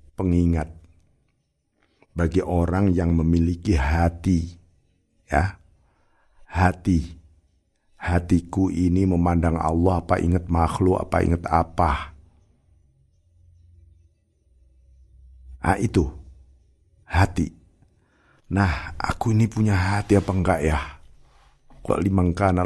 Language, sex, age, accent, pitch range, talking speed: Indonesian, male, 50-69, native, 80-95 Hz, 80 wpm